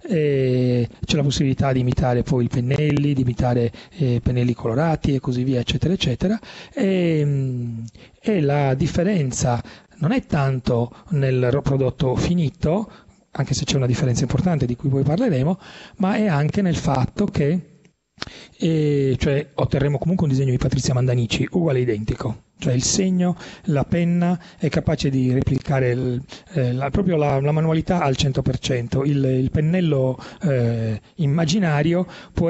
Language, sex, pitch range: Italian, male, 130-170 Hz